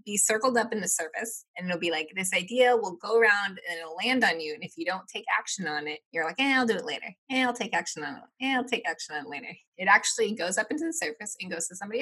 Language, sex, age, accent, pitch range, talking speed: English, female, 20-39, American, 175-235 Hz, 295 wpm